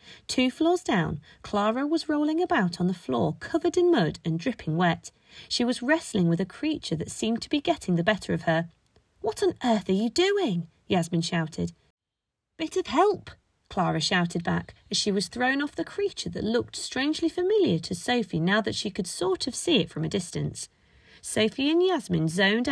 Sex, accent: female, British